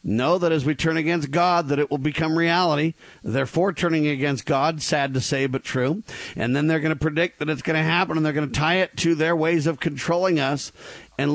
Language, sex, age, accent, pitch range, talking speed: English, male, 50-69, American, 150-185 Hz, 240 wpm